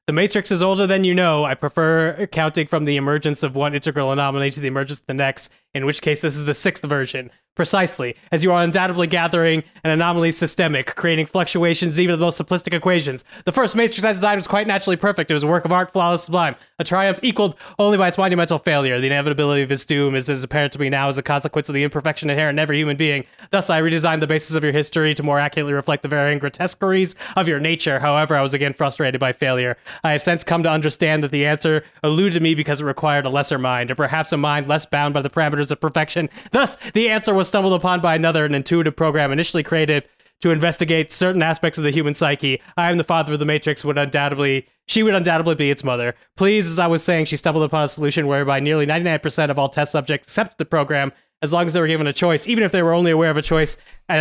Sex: male